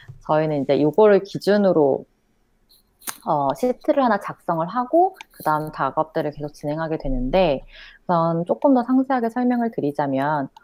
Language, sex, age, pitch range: Korean, female, 30-49, 140-205 Hz